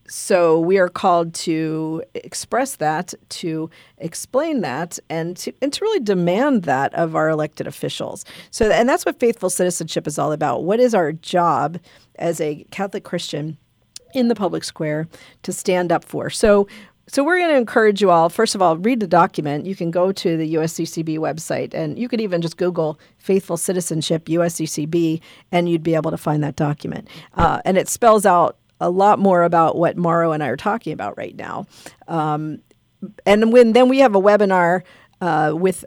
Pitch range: 160-195 Hz